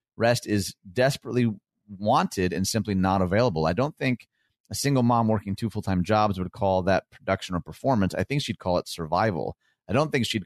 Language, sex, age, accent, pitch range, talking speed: English, male, 30-49, American, 95-115 Hz, 195 wpm